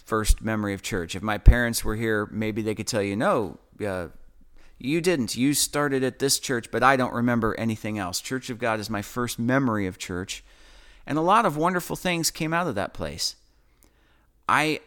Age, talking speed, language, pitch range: 40-59, 200 wpm, English, 110-150 Hz